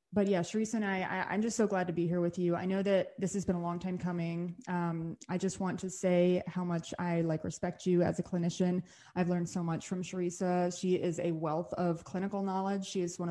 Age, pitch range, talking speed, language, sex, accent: 20-39, 170-190 Hz, 255 wpm, English, female, American